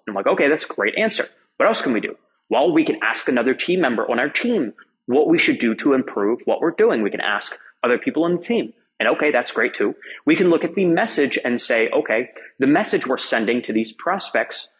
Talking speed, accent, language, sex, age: 245 wpm, American, English, male, 30-49